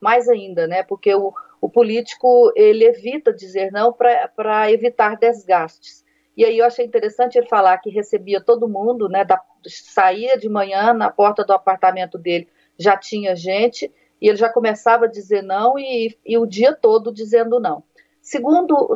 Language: Portuguese